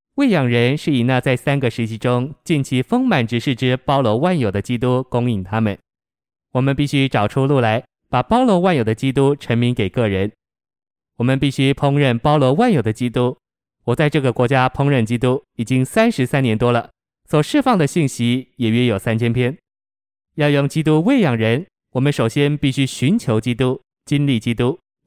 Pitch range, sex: 115-145 Hz, male